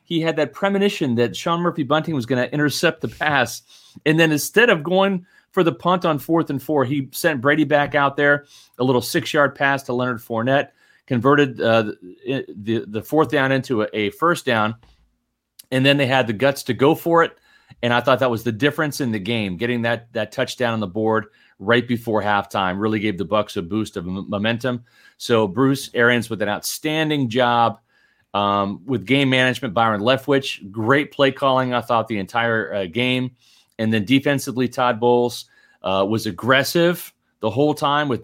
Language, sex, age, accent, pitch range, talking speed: English, male, 30-49, American, 115-145 Hz, 190 wpm